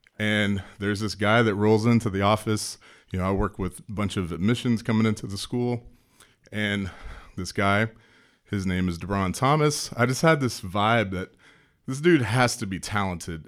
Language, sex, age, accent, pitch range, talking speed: English, male, 30-49, American, 95-125 Hz, 185 wpm